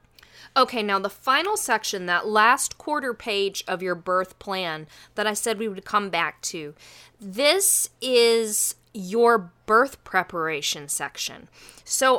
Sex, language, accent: female, English, American